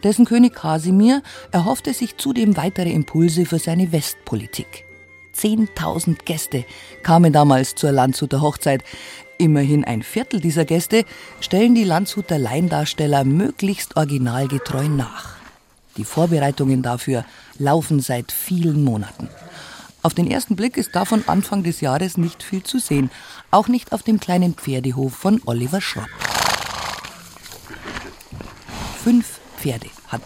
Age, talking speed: 50-69, 125 wpm